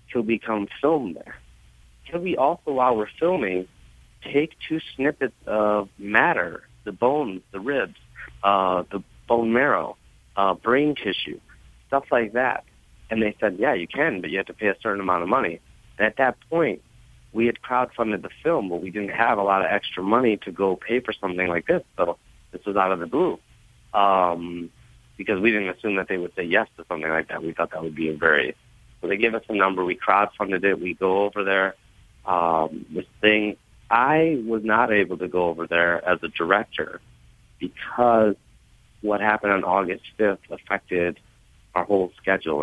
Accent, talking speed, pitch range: American, 190 wpm, 90-105 Hz